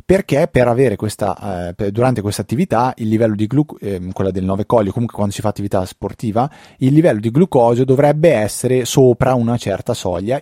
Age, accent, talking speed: 30-49, native, 190 wpm